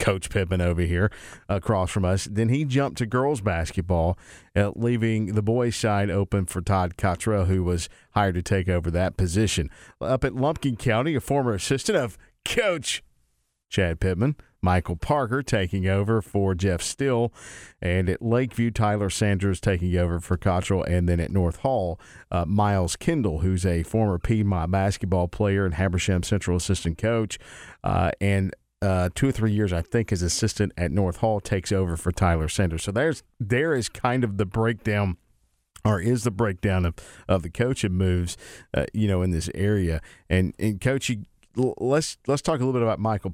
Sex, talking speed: male, 180 wpm